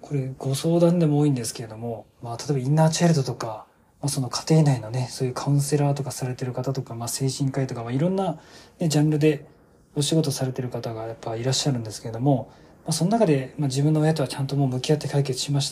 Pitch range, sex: 130-160 Hz, male